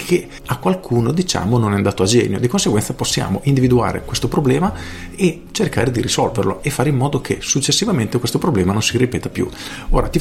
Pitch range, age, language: 100-130 Hz, 40-59, Italian